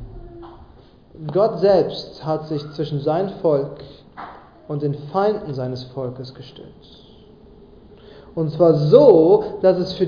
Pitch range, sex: 160-230 Hz, male